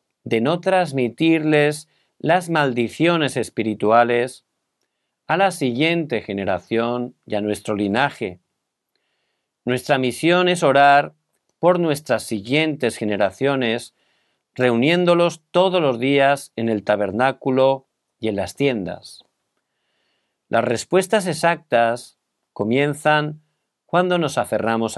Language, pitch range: Korean, 115-155 Hz